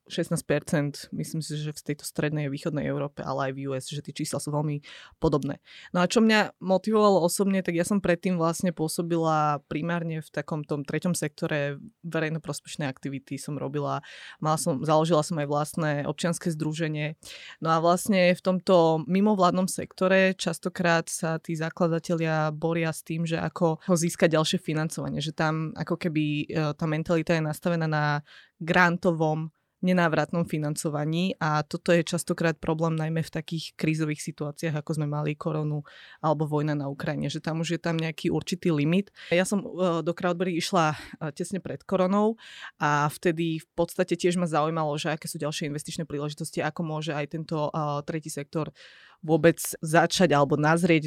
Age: 20-39